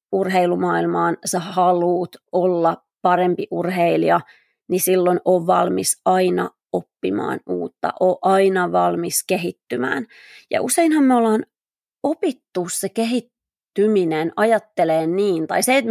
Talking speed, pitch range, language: 110 wpm, 175-210 Hz, Finnish